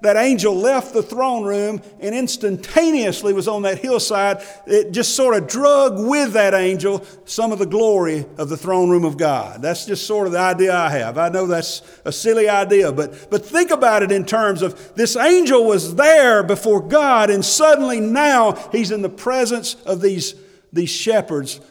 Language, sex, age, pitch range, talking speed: English, male, 50-69, 175-220 Hz, 190 wpm